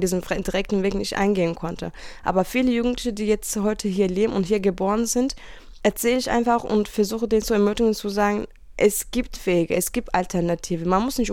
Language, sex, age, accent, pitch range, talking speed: German, female, 20-39, German, 195-240 Hz, 195 wpm